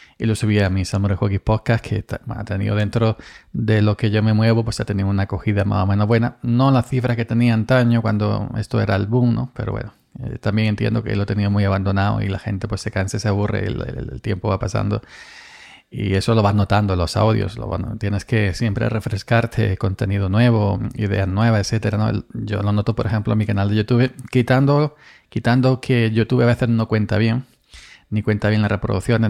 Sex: male